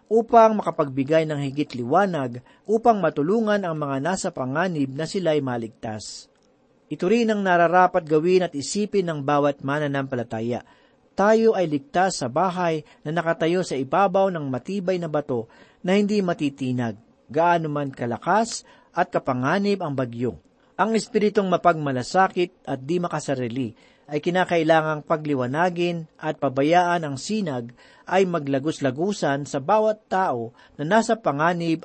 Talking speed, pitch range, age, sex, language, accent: 130 wpm, 135-190 Hz, 40-59, male, Filipino, native